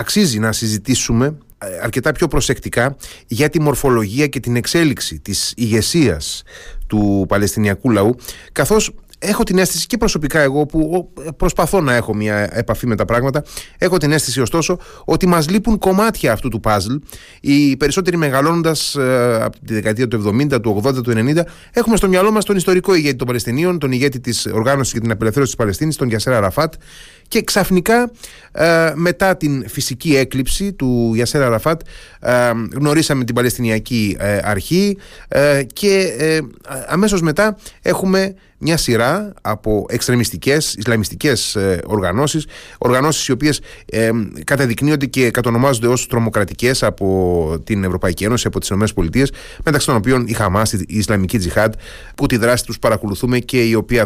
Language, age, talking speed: Greek, 30-49, 140 wpm